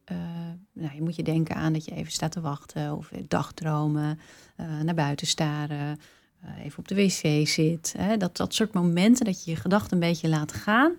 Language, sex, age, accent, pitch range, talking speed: Dutch, female, 40-59, Dutch, 165-220 Hz, 205 wpm